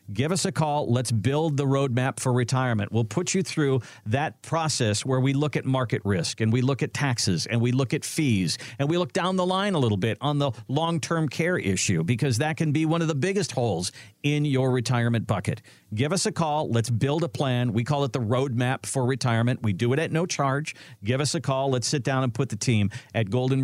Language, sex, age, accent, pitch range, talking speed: English, male, 50-69, American, 115-145 Hz, 235 wpm